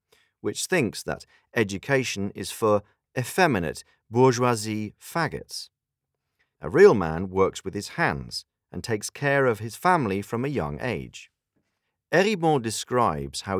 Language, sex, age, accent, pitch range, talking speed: Czech, male, 40-59, British, 95-140 Hz, 130 wpm